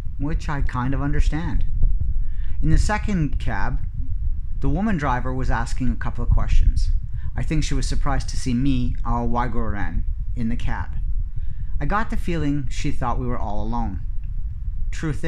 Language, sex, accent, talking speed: English, male, American, 165 wpm